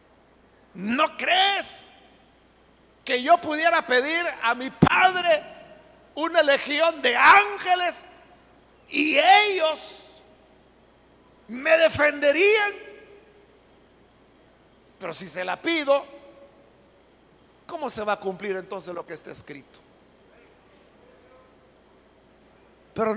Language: Spanish